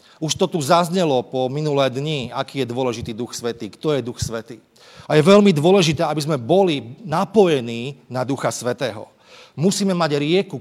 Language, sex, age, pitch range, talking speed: Slovak, male, 40-59, 130-175 Hz, 170 wpm